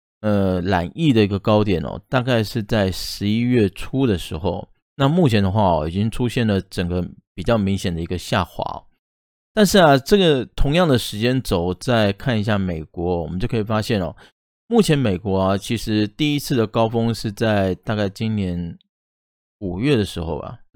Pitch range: 95-120 Hz